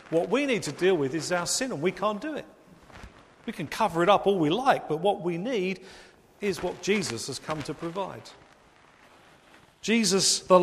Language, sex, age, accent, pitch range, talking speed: English, male, 50-69, British, 140-195 Hz, 200 wpm